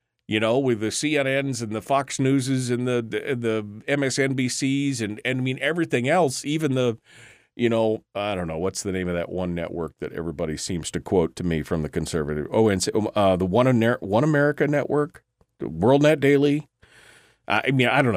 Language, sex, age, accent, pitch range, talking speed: English, male, 40-59, American, 110-145 Hz, 200 wpm